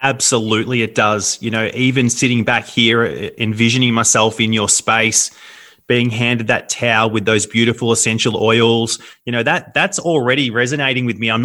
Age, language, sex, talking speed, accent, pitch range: 30-49, English, male, 170 wpm, Australian, 115-155 Hz